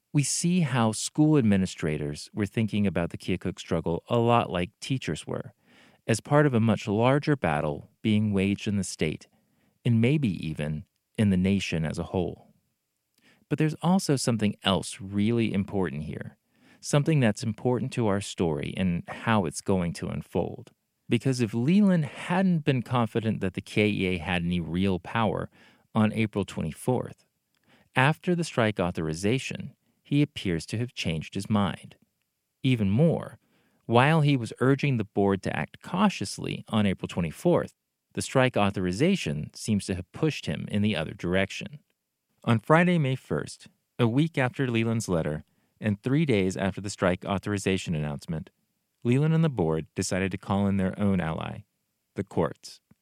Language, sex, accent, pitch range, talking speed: English, male, American, 95-135 Hz, 160 wpm